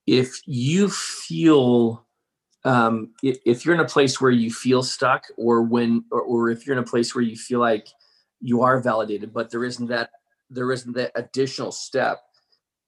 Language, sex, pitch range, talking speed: English, male, 115-135 Hz, 180 wpm